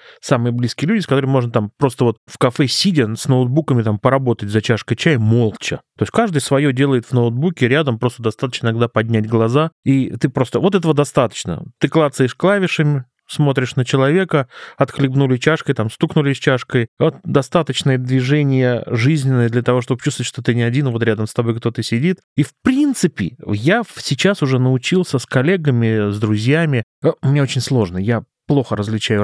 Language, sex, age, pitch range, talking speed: Russian, male, 20-39, 110-145 Hz, 175 wpm